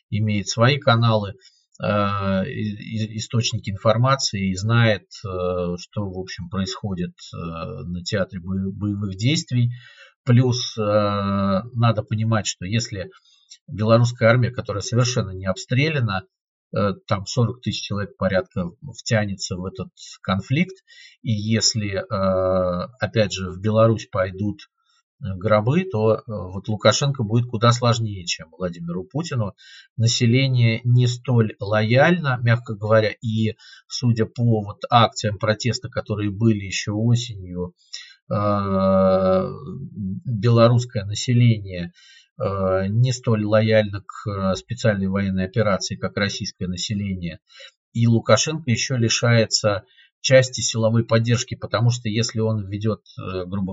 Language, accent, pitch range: Russian, native, 100-120 Hz